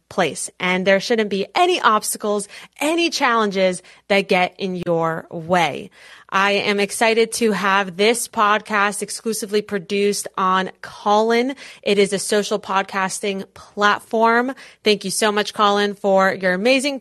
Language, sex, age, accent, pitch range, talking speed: English, female, 20-39, American, 195-255 Hz, 140 wpm